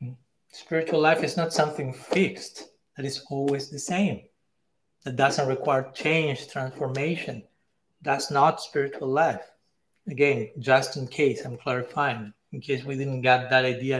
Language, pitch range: English, 135-155 Hz